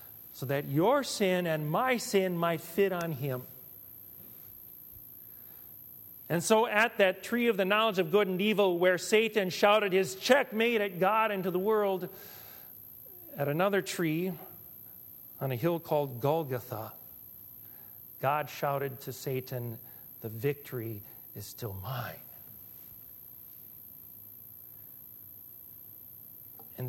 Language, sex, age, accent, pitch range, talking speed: English, male, 40-59, American, 125-205 Hz, 115 wpm